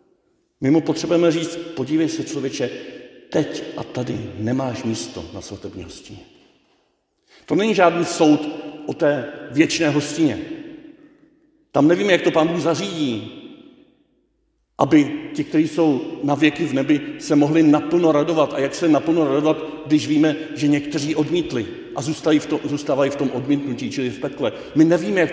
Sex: male